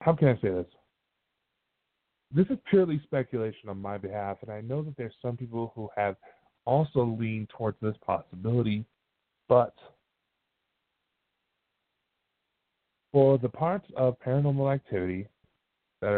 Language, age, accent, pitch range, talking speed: English, 40-59, American, 110-145 Hz, 125 wpm